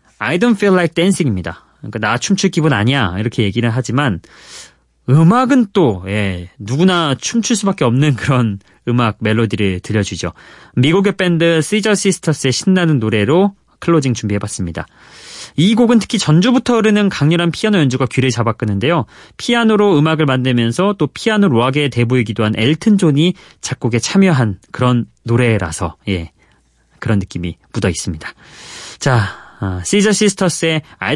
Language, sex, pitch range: Korean, male, 110-170 Hz